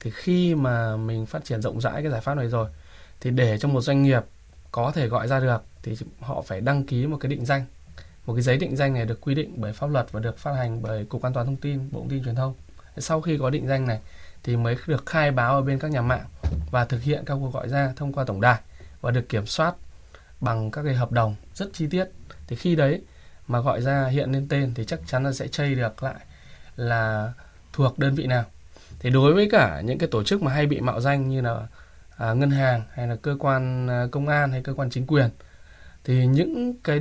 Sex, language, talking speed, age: male, Vietnamese, 250 wpm, 20-39